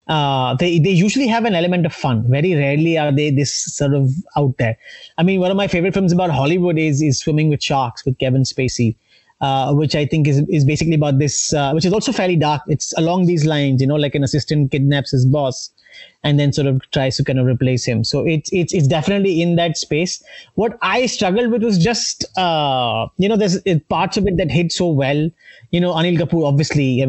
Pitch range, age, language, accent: 140-175 Hz, 30-49, English, Indian